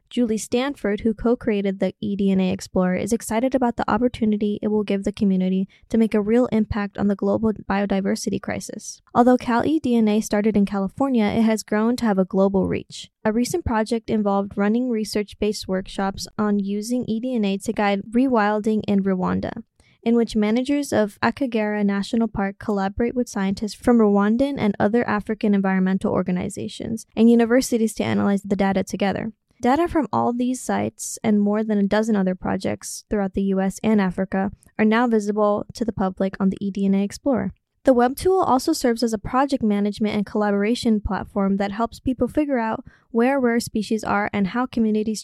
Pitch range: 200-235 Hz